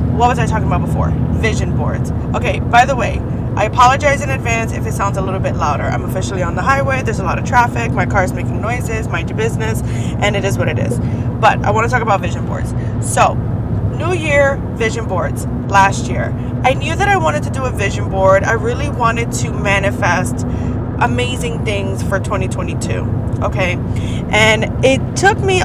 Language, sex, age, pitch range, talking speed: English, female, 20-39, 115-125 Hz, 200 wpm